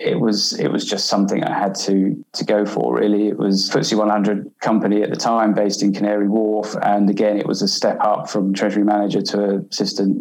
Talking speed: 225 wpm